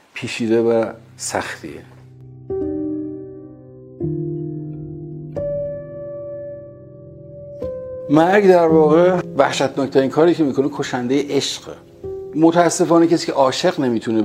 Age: 50-69